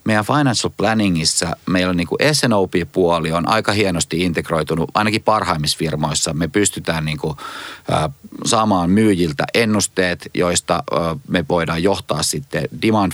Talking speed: 120 wpm